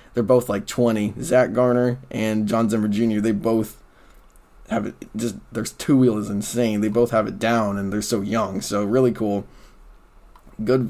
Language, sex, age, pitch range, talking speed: English, male, 20-39, 110-135 Hz, 175 wpm